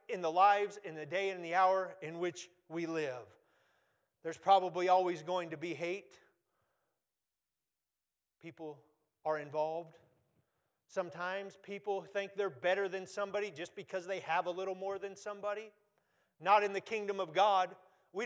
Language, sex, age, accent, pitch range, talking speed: English, male, 40-59, American, 175-210 Hz, 150 wpm